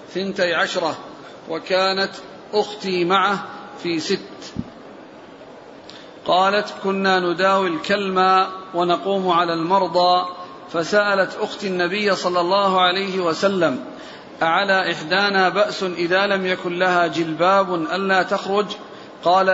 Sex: male